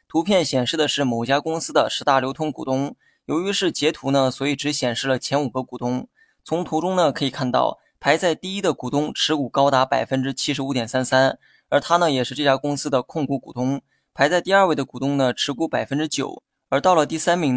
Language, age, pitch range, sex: Chinese, 20-39, 130-160 Hz, male